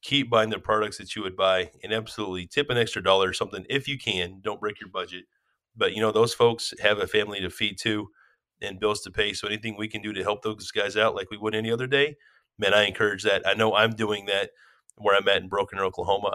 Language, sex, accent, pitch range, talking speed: English, male, American, 105-130 Hz, 255 wpm